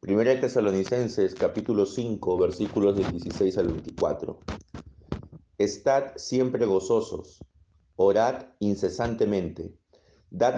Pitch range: 95-120 Hz